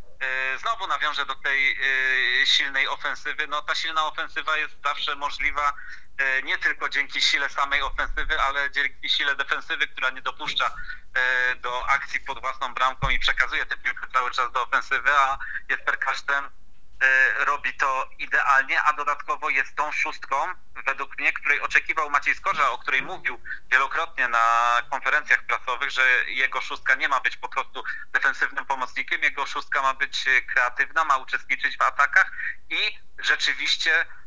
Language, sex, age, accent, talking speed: Polish, male, 30-49, native, 150 wpm